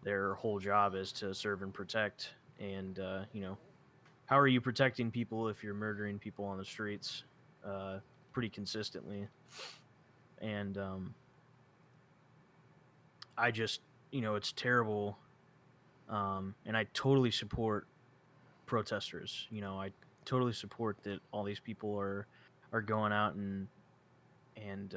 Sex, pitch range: male, 100-130 Hz